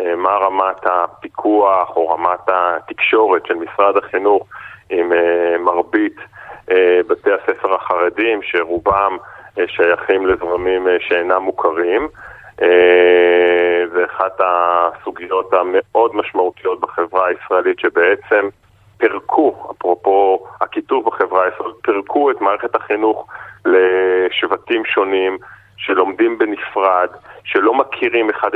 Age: 30-49